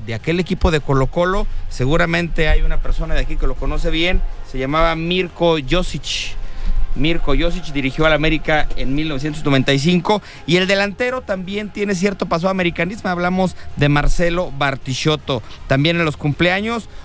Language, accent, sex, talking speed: English, Mexican, male, 155 wpm